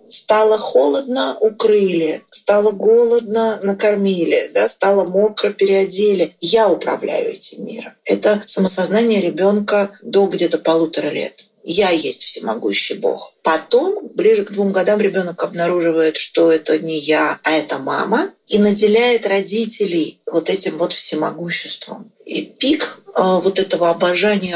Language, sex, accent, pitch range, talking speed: Russian, female, native, 180-230 Hz, 125 wpm